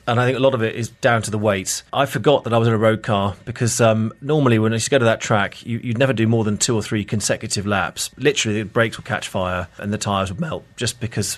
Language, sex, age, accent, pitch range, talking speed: English, male, 30-49, British, 105-125 Hz, 285 wpm